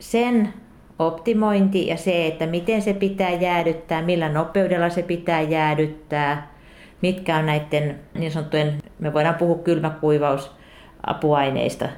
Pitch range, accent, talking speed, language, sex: 140-160 Hz, native, 115 wpm, Finnish, female